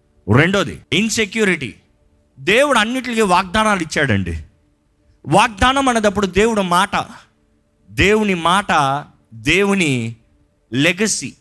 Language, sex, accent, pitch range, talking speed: Telugu, male, native, 145-220 Hz, 75 wpm